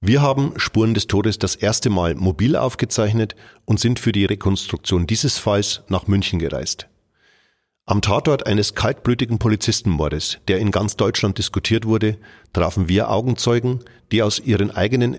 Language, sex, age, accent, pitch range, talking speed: German, male, 40-59, German, 95-115 Hz, 150 wpm